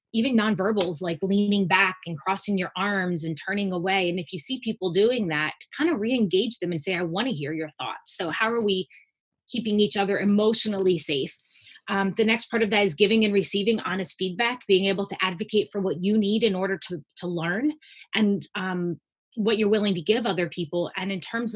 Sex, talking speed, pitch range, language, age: female, 210 wpm, 185-220 Hz, English, 20-39